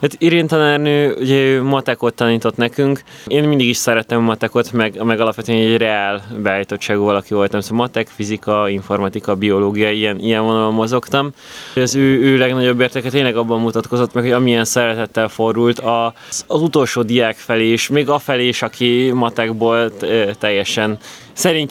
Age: 20-39